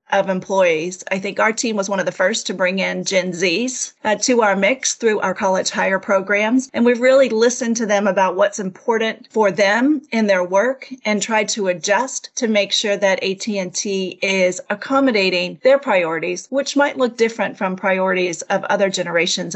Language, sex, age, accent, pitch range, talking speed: English, female, 40-59, American, 195-255 Hz, 185 wpm